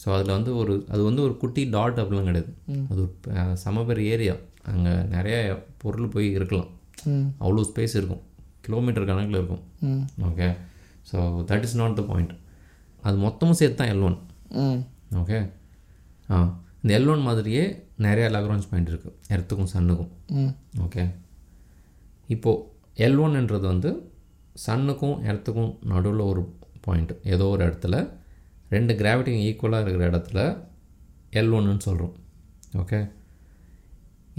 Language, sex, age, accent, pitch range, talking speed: Tamil, male, 20-39, native, 85-115 Hz, 120 wpm